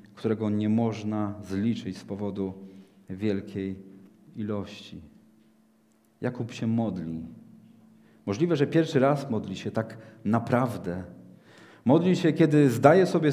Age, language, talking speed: 40-59, Polish, 110 wpm